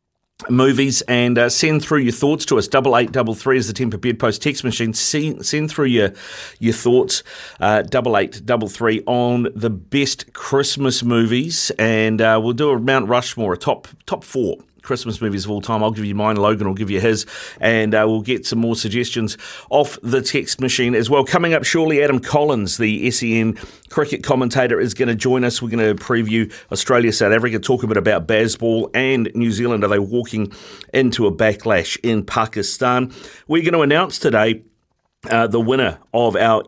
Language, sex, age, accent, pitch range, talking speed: English, male, 40-59, Australian, 110-130 Hz, 195 wpm